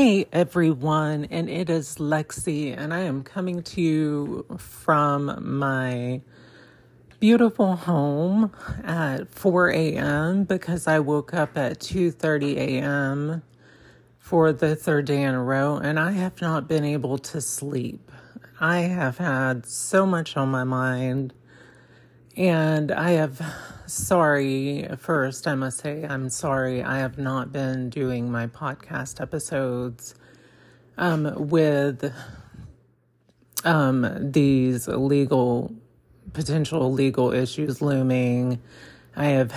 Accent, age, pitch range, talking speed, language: American, 40-59, 125-155 Hz, 120 wpm, English